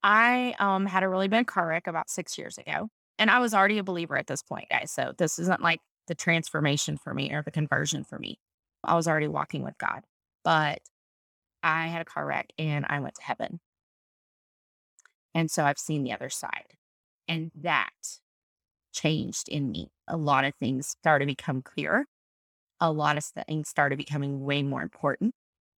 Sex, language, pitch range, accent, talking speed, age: female, English, 145-170 Hz, American, 190 wpm, 20-39